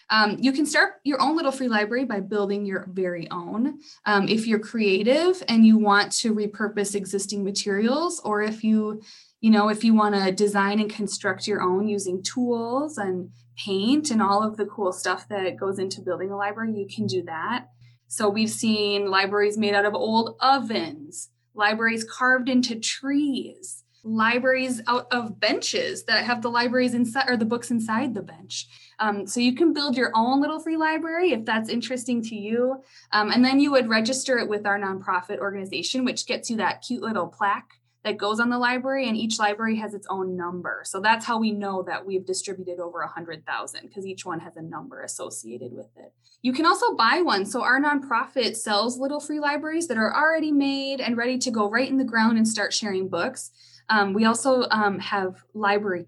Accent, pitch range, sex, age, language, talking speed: American, 195-255 Hz, female, 20-39, English, 200 wpm